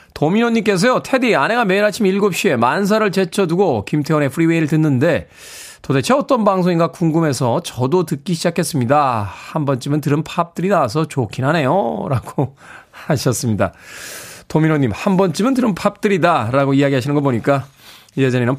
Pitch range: 125-175 Hz